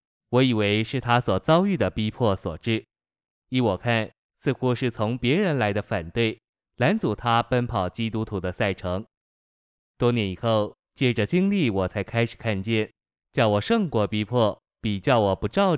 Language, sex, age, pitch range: Chinese, male, 20-39, 100-120 Hz